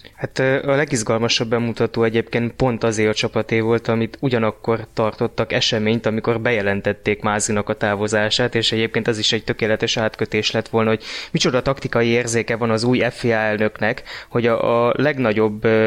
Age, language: 20-39, Hungarian